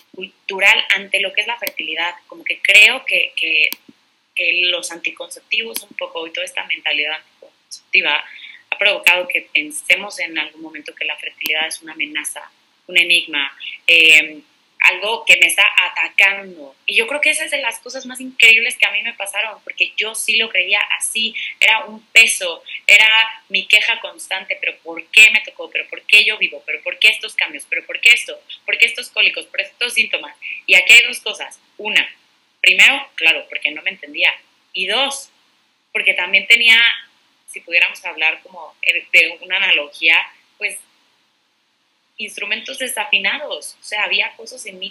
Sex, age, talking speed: female, 20-39, 175 wpm